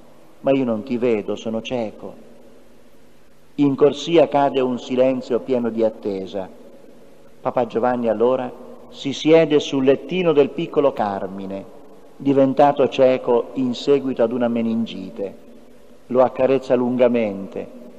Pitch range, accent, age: 115-165 Hz, native, 40-59